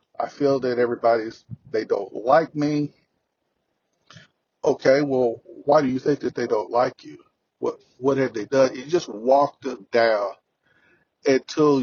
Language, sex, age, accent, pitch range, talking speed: English, male, 40-59, American, 120-150 Hz, 150 wpm